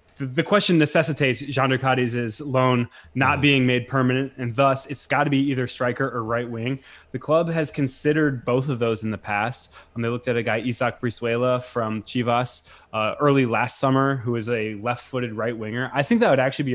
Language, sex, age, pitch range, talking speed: English, male, 20-39, 115-135 Hz, 215 wpm